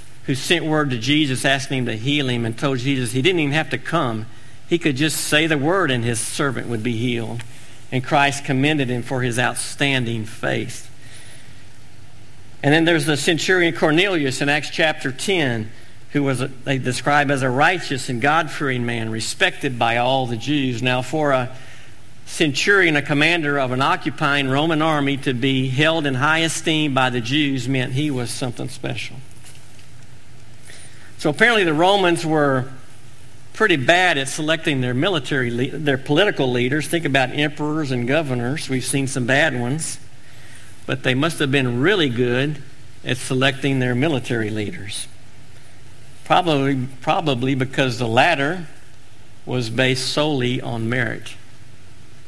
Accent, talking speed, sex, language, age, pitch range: American, 160 wpm, male, English, 50-69, 120-145 Hz